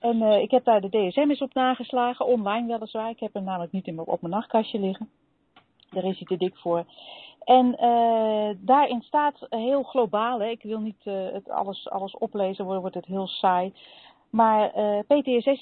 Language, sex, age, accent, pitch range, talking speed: Dutch, female, 40-59, Dutch, 185-240 Hz, 200 wpm